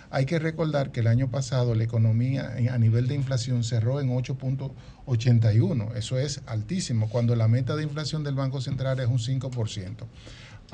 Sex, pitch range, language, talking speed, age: male, 120-150 Hz, Spanish, 170 wpm, 50-69